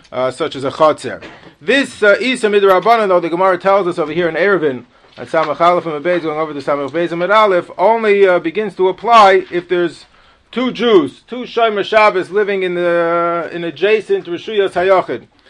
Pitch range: 170-220 Hz